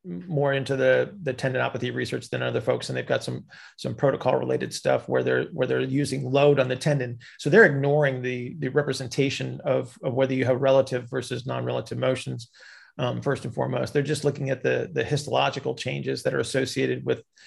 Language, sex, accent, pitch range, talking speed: English, male, American, 125-145 Hz, 195 wpm